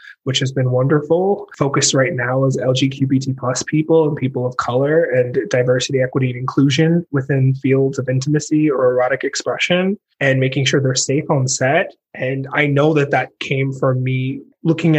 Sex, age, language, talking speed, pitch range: male, 20-39, English, 170 wpm, 130-155 Hz